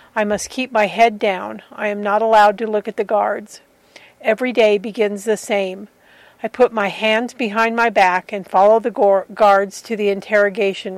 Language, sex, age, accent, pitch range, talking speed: English, female, 50-69, American, 205-235 Hz, 185 wpm